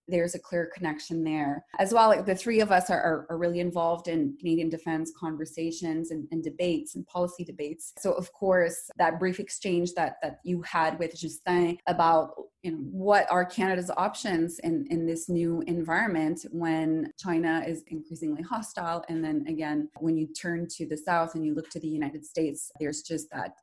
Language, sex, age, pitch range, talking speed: English, female, 20-39, 160-185 Hz, 190 wpm